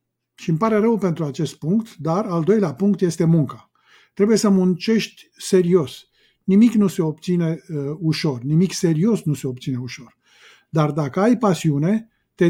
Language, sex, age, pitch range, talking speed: Romanian, male, 50-69, 155-205 Hz, 165 wpm